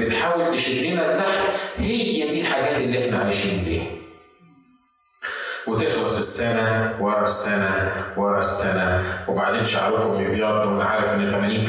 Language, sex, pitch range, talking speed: Arabic, male, 100-155 Hz, 130 wpm